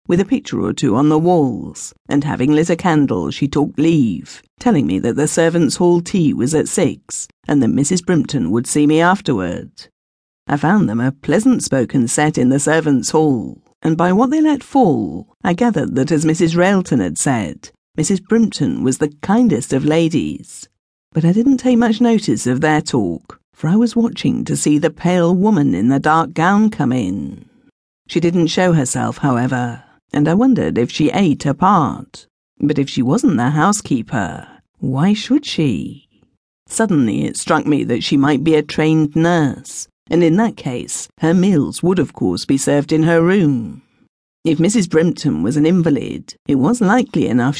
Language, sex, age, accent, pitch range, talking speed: English, female, 50-69, British, 145-185 Hz, 185 wpm